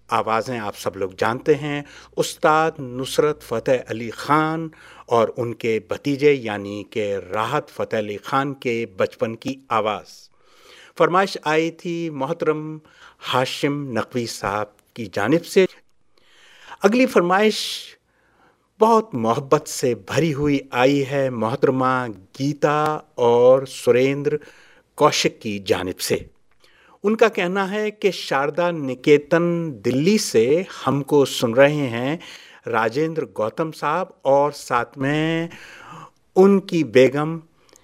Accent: Indian